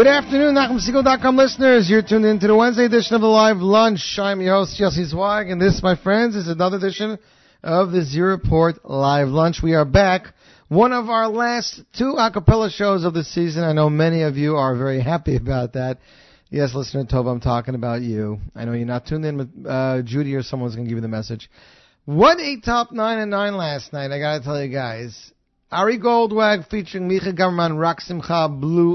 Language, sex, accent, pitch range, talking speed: English, male, American, 135-190 Hz, 205 wpm